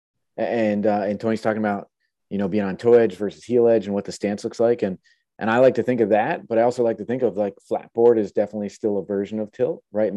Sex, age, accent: male, 30-49, American